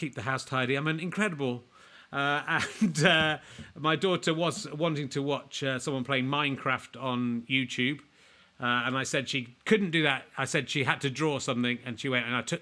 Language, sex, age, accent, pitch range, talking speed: English, male, 40-59, British, 135-180 Hz, 205 wpm